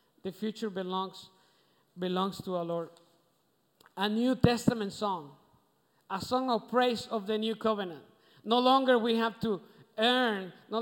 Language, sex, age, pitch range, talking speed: English, male, 50-69, 185-230 Hz, 145 wpm